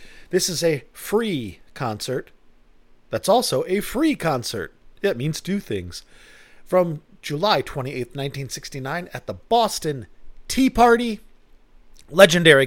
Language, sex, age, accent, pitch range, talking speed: English, male, 40-59, American, 105-160 Hz, 115 wpm